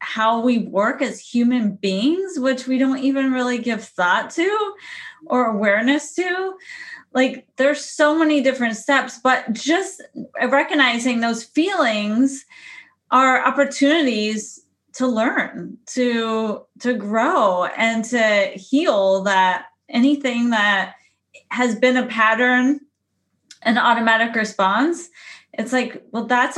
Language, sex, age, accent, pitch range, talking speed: English, female, 20-39, American, 220-275 Hz, 115 wpm